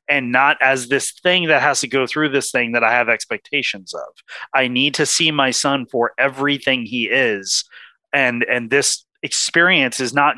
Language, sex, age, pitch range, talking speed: English, male, 30-49, 115-150 Hz, 190 wpm